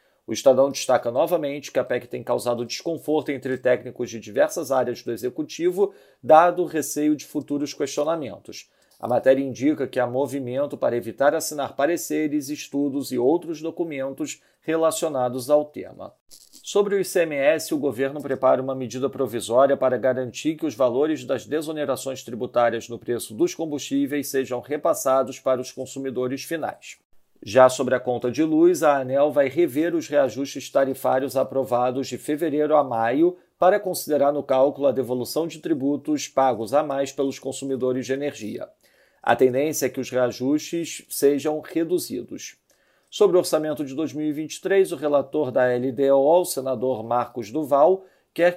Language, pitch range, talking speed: Portuguese, 130-160 Hz, 150 wpm